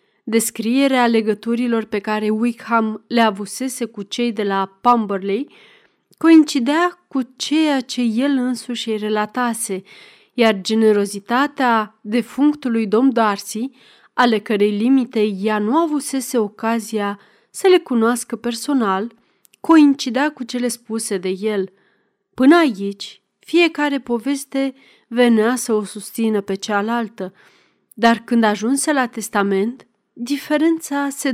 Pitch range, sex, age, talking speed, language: 215-265 Hz, female, 30-49, 110 wpm, Romanian